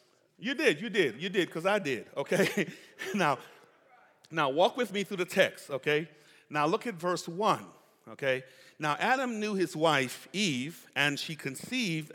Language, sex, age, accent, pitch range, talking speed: English, male, 40-59, American, 150-235 Hz, 170 wpm